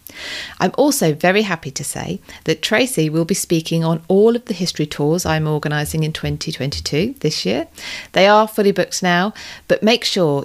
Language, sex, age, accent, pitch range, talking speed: English, female, 40-59, British, 155-200 Hz, 180 wpm